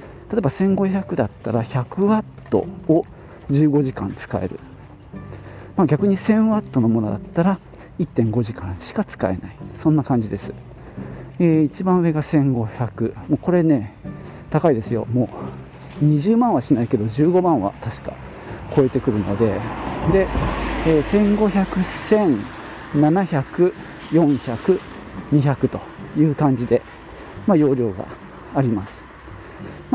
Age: 40-59